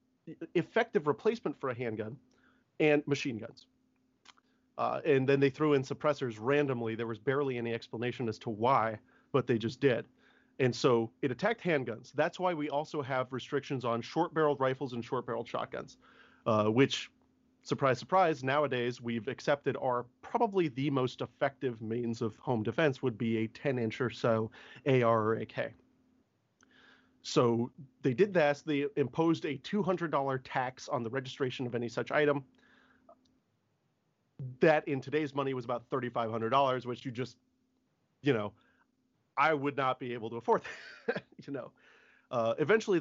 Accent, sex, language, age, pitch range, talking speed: American, male, English, 30-49, 120-150 Hz, 155 wpm